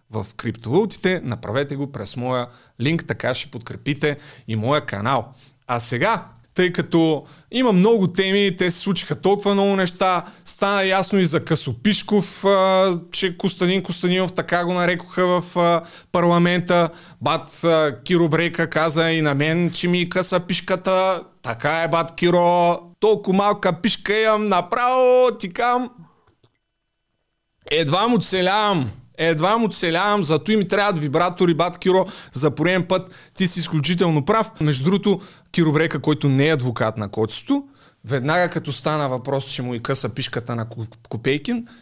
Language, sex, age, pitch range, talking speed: Bulgarian, male, 30-49, 145-195 Hz, 140 wpm